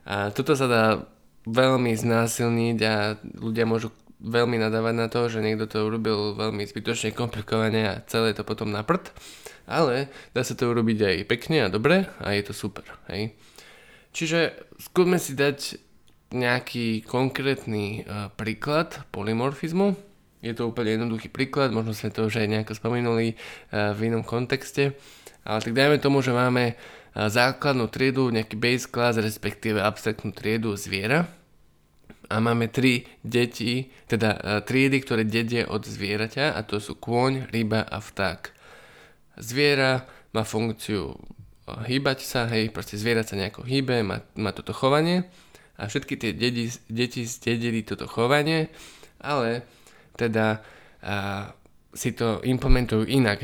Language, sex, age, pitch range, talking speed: Slovak, male, 20-39, 110-130 Hz, 145 wpm